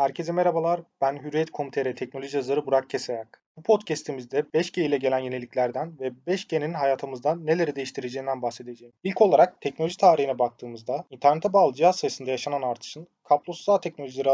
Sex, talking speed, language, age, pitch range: male, 140 wpm, Turkish, 30-49, 135-180 Hz